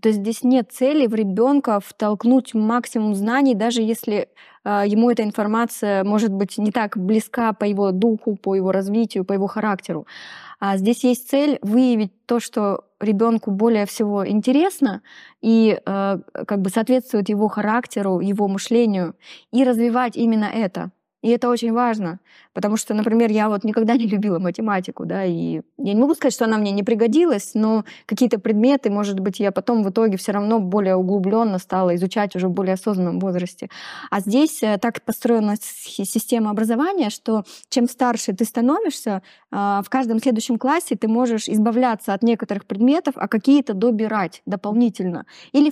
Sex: female